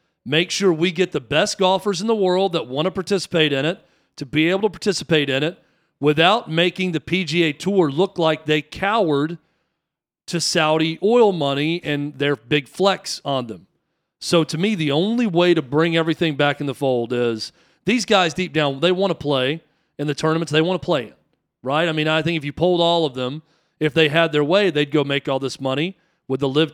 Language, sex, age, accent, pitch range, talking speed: English, male, 40-59, American, 140-170 Hz, 220 wpm